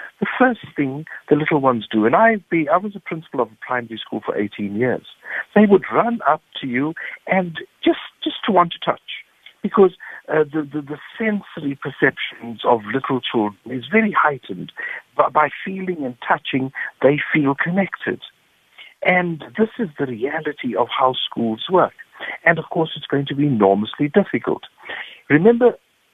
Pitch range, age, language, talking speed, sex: 130-200 Hz, 60-79, English, 165 wpm, male